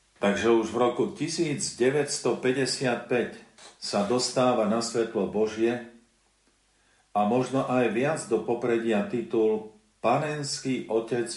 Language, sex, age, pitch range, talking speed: Slovak, male, 50-69, 105-125 Hz, 100 wpm